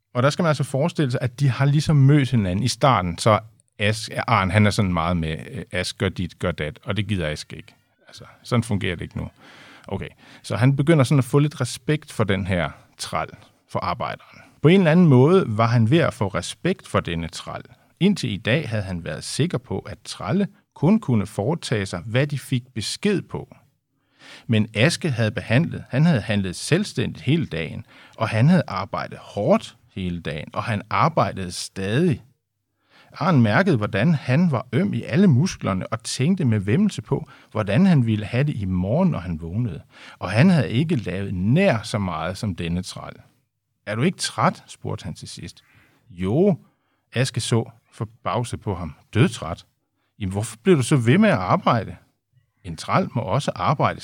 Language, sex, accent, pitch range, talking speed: Danish, male, native, 100-145 Hz, 190 wpm